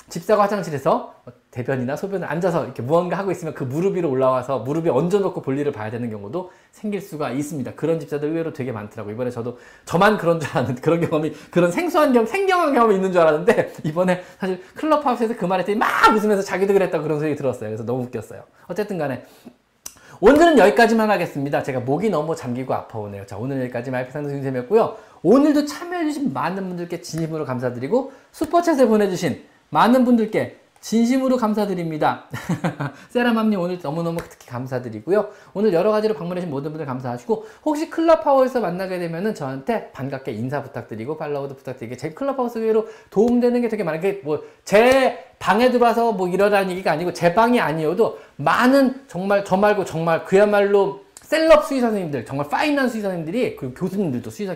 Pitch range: 140-220 Hz